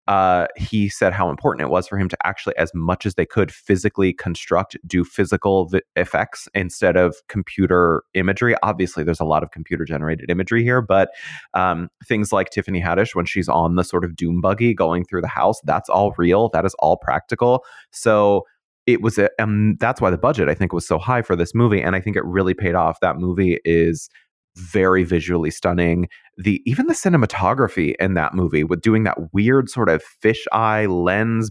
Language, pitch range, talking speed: English, 85-105 Hz, 200 wpm